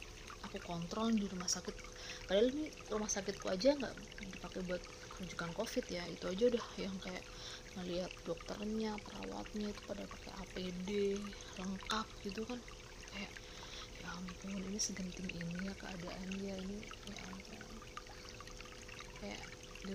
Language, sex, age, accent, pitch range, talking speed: Indonesian, female, 20-39, native, 180-200 Hz, 130 wpm